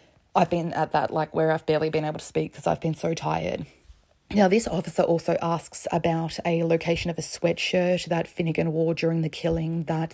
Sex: female